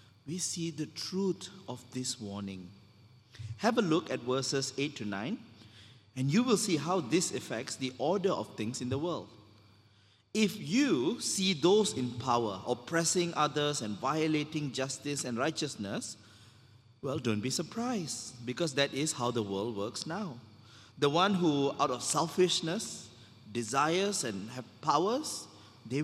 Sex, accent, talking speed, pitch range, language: male, Malaysian, 150 wpm, 110-170 Hz, English